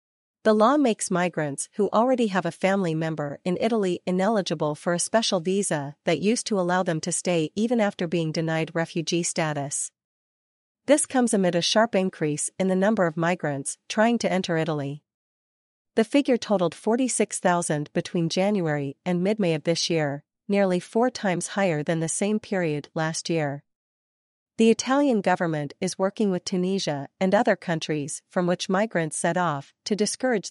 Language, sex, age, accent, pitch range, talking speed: English, female, 40-59, American, 160-205 Hz, 165 wpm